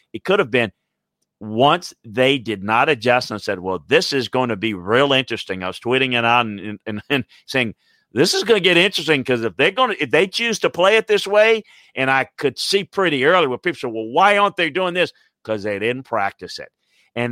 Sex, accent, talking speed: male, American, 235 wpm